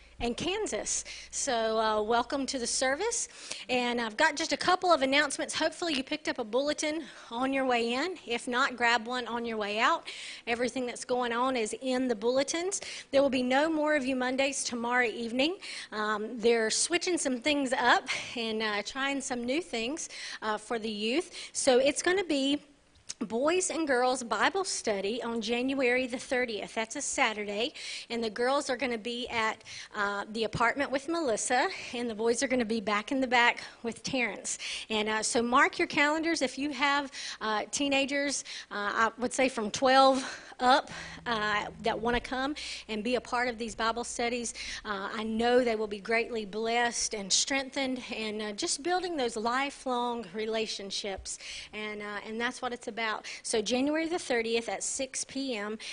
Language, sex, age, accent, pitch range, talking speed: English, female, 40-59, American, 230-280 Hz, 185 wpm